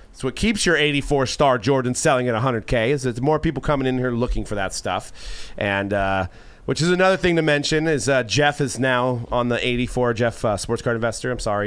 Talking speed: 230 wpm